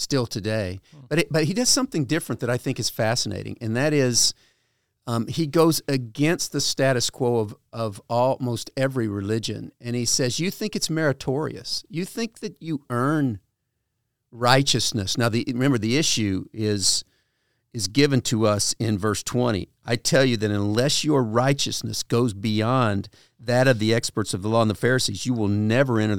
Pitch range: 110-140 Hz